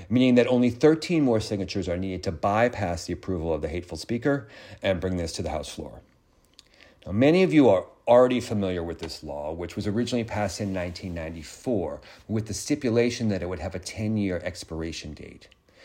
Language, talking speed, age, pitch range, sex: English, 190 wpm, 40-59, 95-120 Hz, male